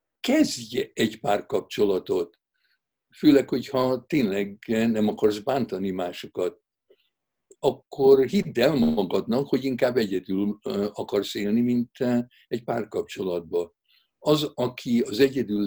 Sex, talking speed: male, 100 wpm